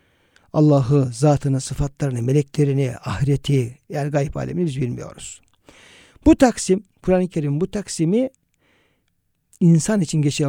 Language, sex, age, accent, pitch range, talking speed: Turkish, male, 60-79, native, 140-165 Hz, 115 wpm